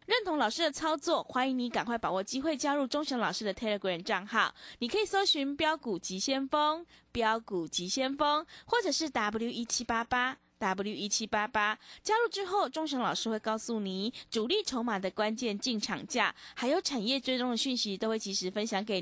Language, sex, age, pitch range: Chinese, female, 20-39, 205-295 Hz